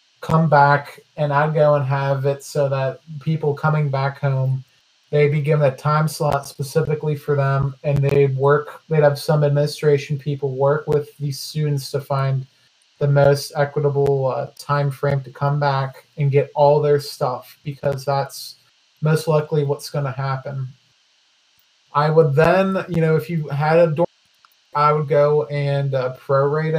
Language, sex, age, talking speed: English, male, 30-49, 170 wpm